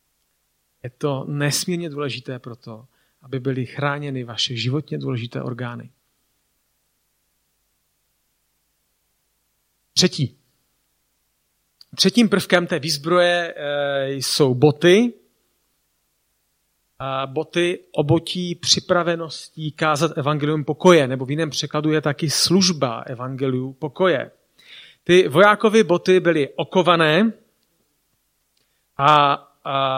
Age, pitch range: 40-59, 135-175 Hz